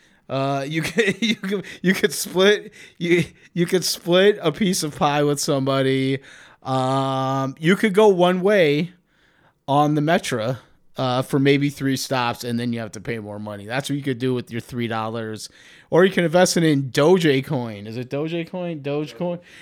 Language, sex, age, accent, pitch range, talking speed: English, male, 30-49, American, 130-170 Hz, 185 wpm